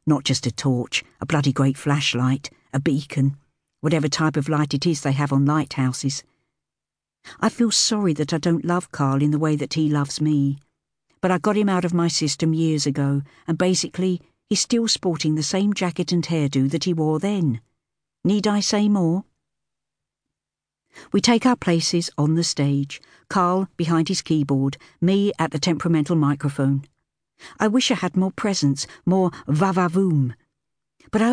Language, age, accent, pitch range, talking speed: English, 60-79, British, 145-185 Hz, 170 wpm